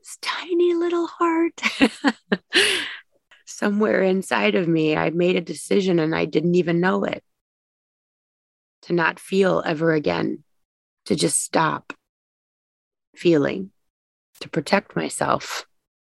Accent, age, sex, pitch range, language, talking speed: American, 30-49, female, 150-190 Hz, English, 110 wpm